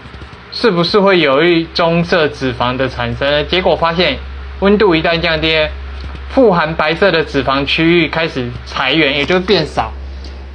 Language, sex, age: Chinese, male, 20-39